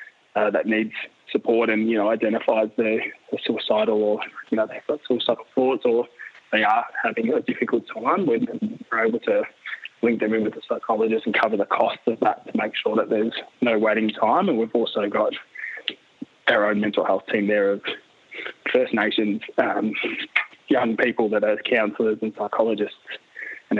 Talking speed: 175 wpm